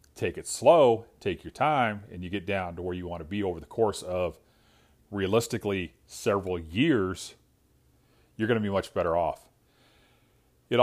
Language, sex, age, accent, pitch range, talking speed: English, male, 40-59, American, 90-115 Hz, 170 wpm